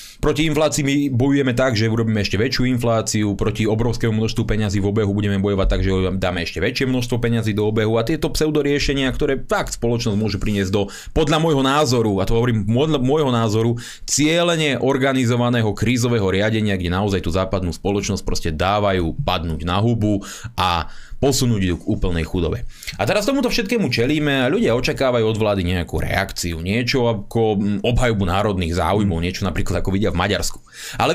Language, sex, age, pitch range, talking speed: Slovak, male, 30-49, 95-135 Hz, 170 wpm